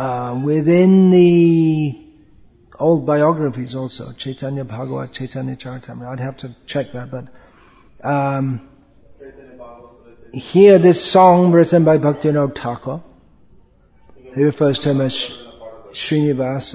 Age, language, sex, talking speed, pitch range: 40-59, English, male, 115 wpm, 130-160 Hz